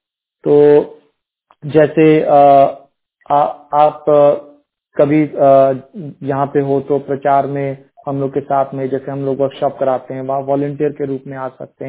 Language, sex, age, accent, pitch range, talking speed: Hindi, male, 40-59, native, 140-155 Hz, 150 wpm